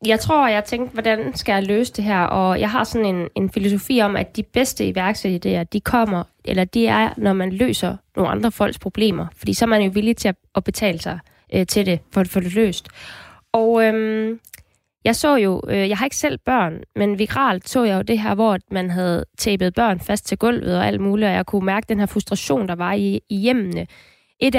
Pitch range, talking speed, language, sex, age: 195-245 Hz, 240 wpm, Danish, female, 20-39